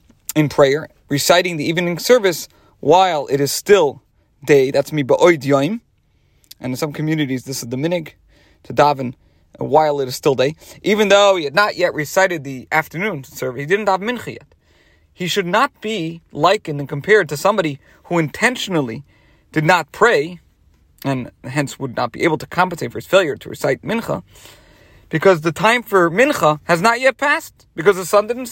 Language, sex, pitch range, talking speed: English, male, 135-200 Hz, 180 wpm